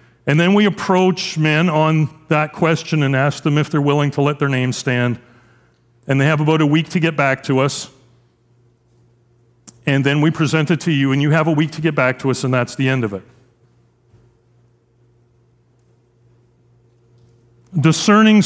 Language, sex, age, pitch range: English, male, 40-59, 120-160 Hz